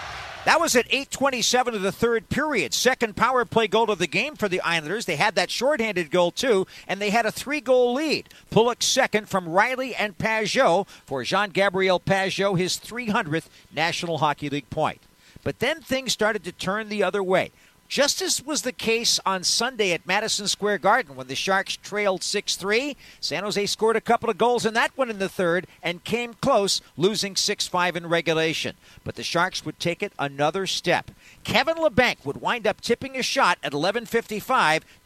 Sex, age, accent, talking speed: male, 50-69, American, 185 wpm